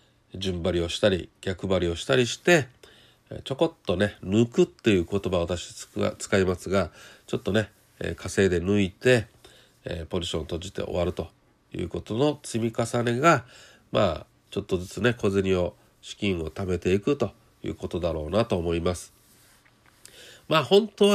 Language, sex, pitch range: Japanese, male, 95-130 Hz